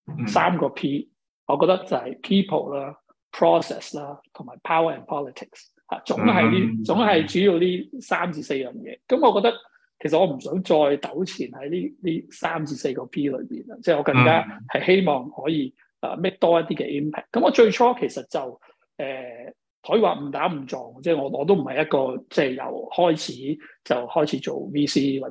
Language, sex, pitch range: Chinese, male, 145-185 Hz